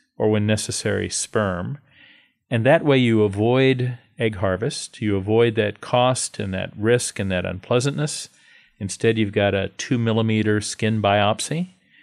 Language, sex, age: English, male, 40-59